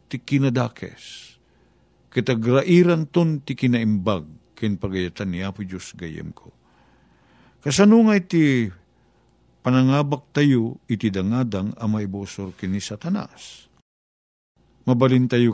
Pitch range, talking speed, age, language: 95-135 Hz, 95 wpm, 50-69, Filipino